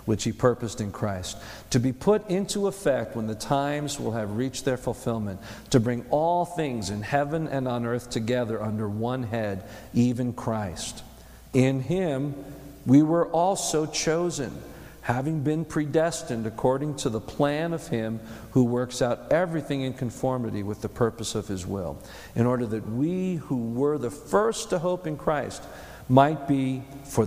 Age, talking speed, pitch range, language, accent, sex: 50-69, 165 wpm, 110-155 Hz, English, American, male